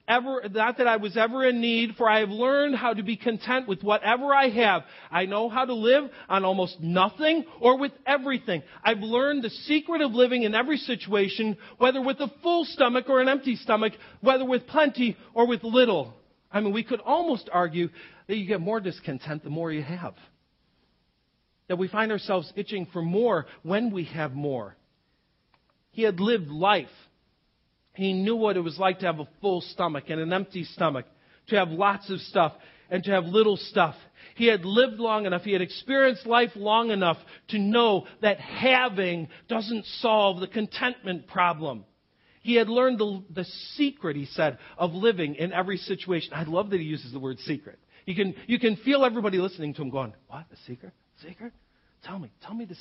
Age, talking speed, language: 40-59, 195 wpm, English